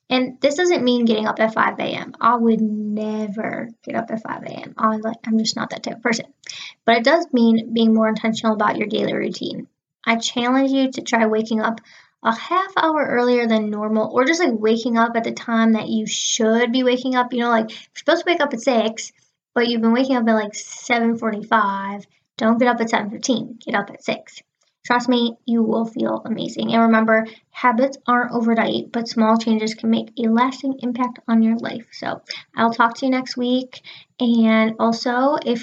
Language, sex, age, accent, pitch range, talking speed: English, female, 10-29, American, 225-250 Hz, 205 wpm